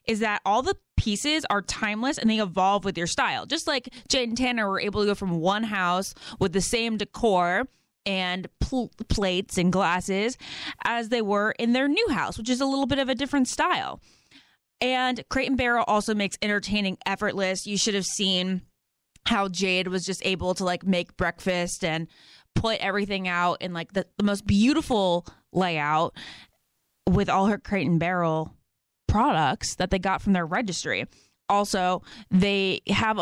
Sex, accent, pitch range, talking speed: female, American, 180-220 Hz, 175 wpm